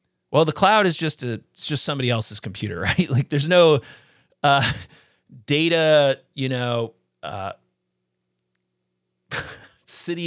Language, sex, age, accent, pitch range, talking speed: English, male, 30-49, American, 110-145 Hz, 125 wpm